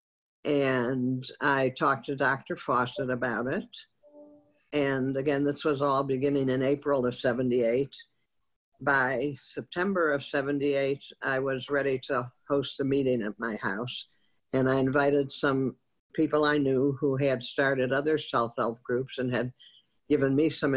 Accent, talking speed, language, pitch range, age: American, 145 wpm, English, 130-150 Hz, 50-69